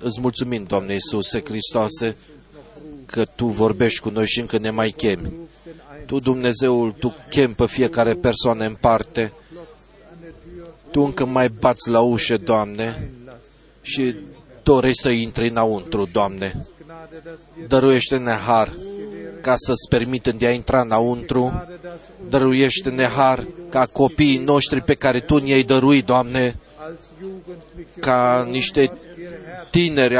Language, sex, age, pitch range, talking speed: Romanian, male, 30-49, 125-170 Hz, 120 wpm